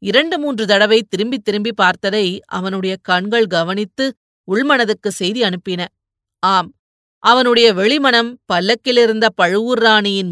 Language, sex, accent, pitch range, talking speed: Tamil, female, native, 180-235 Hz, 105 wpm